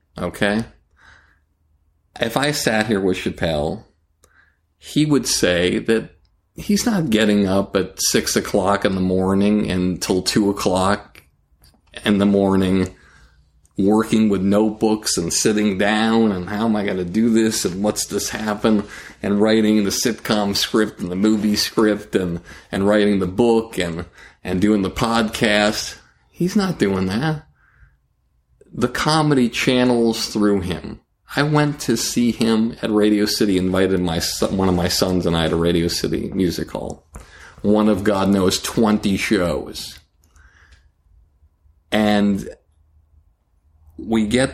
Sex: male